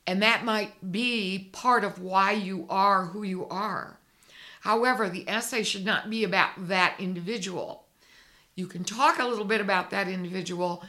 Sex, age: female, 60-79